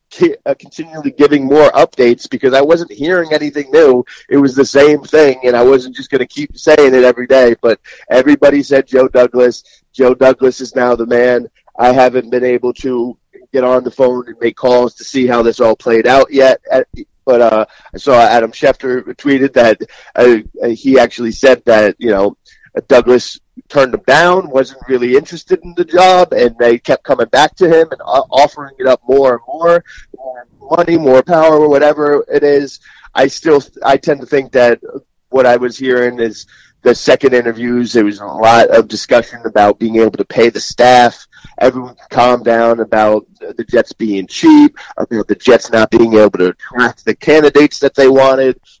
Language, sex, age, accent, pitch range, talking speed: English, male, 30-49, American, 120-145 Hz, 190 wpm